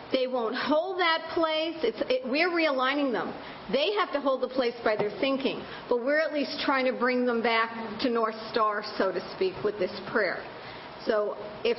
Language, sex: English, female